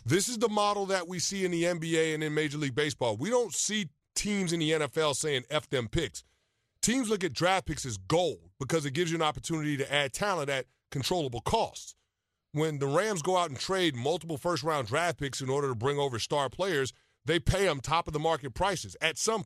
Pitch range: 145-205 Hz